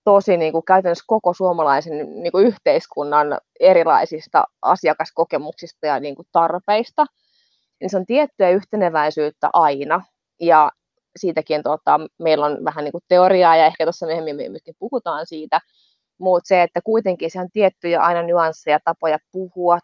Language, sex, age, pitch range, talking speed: Finnish, female, 20-39, 155-185 Hz, 150 wpm